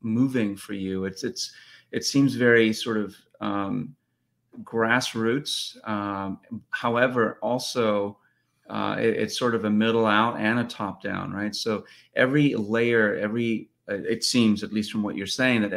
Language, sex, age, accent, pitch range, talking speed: English, male, 30-49, American, 105-120 Hz, 150 wpm